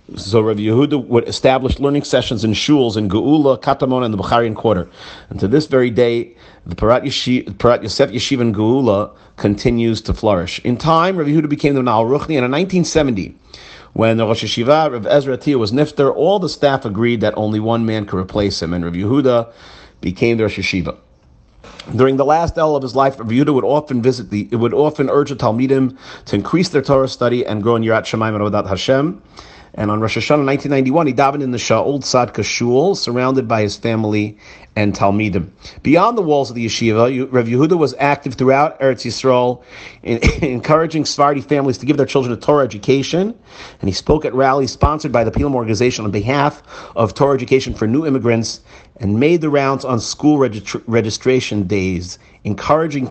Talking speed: 195 wpm